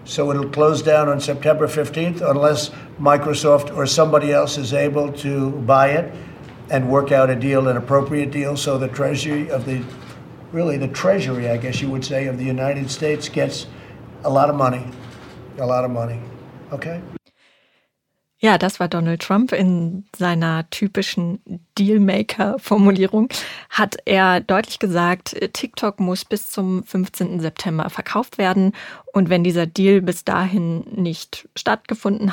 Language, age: German, 50-69